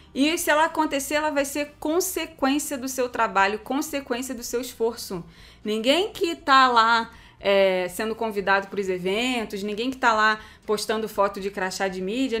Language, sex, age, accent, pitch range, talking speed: Portuguese, female, 20-39, Brazilian, 215-285 Hz, 170 wpm